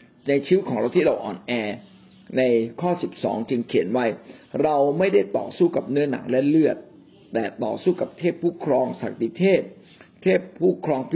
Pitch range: 140-195 Hz